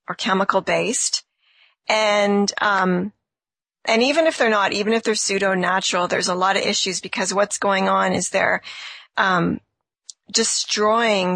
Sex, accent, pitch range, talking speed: female, American, 190-220 Hz, 150 wpm